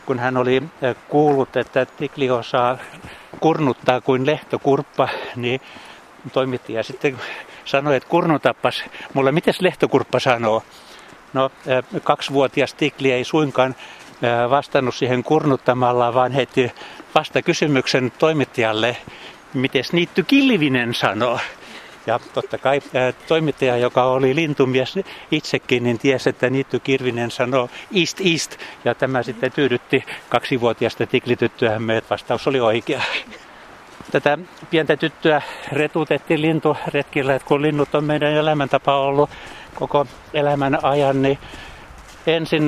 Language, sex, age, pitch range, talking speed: Finnish, male, 60-79, 125-150 Hz, 115 wpm